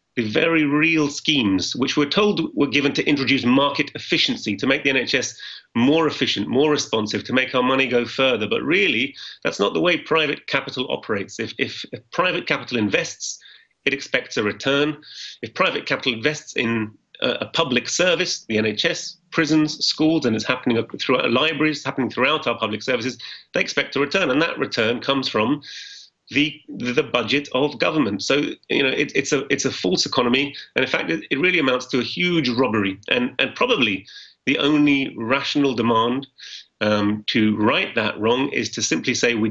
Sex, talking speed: male, 185 wpm